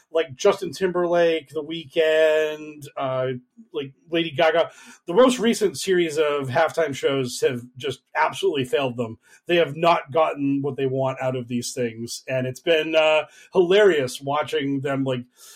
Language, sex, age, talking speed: English, male, 40-59, 155 wpm